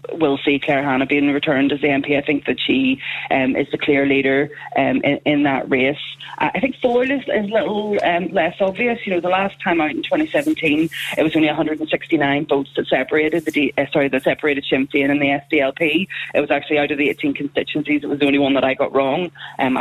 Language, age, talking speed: English, 20-39, 225 wpm